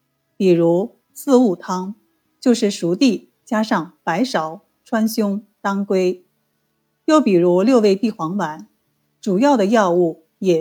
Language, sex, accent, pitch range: Chinese, female, native, 175-240 Hz